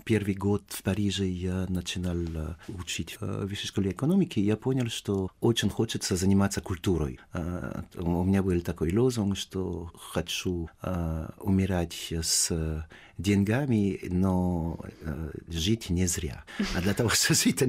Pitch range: 90-110 Hz